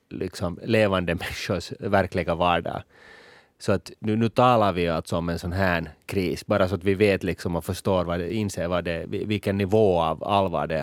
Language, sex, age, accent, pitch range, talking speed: Swedish, male, 30-49, Finnish, 85-105 Hz, 195 wpm